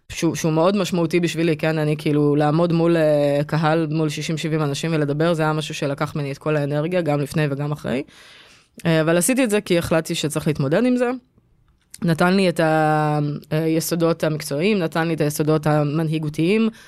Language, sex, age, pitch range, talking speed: Hebrew, female, 20-39, 150-175 Hz, 170 wpm